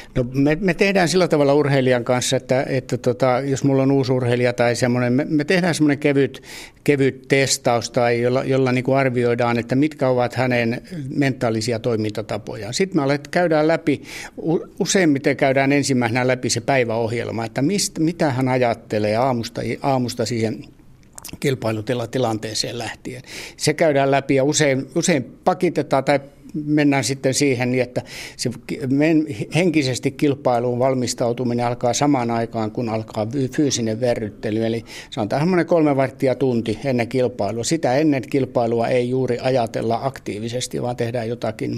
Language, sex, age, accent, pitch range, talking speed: Finnish, male, 60-79, native, 120-145 Hz, 140 wpm